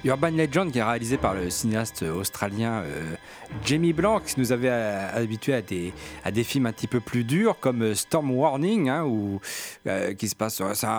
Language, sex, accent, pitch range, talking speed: French, male, French, 110-150 Hz, 200 wpm